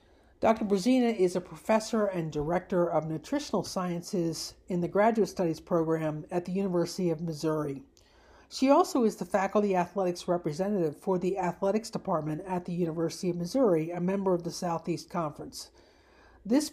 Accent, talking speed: American, 155 wpm